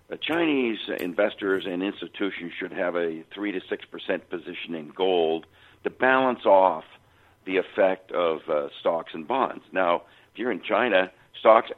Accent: American